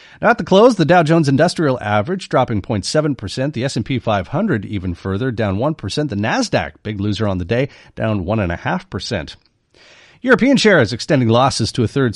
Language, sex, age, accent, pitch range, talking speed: English, male, 40-59, American, 100-140 Hz, 170 wpm